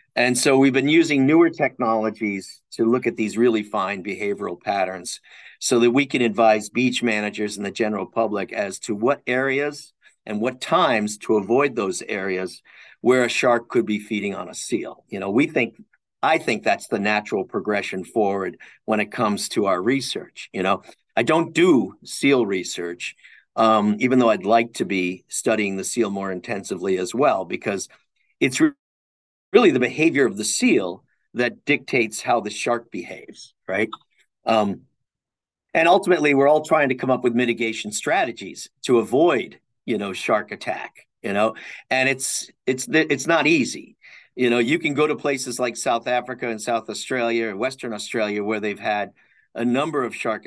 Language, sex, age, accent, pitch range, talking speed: English, male, 50-69, American, 105-130 Hz, 175 wpm